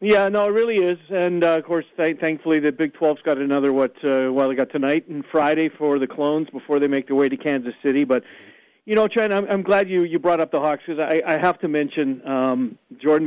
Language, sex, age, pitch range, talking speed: English, male, 50-69, 135-170 Hz, 245 wpm